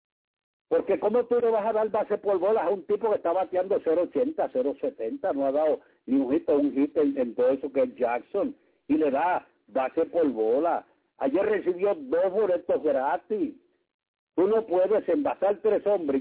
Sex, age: male, 60-79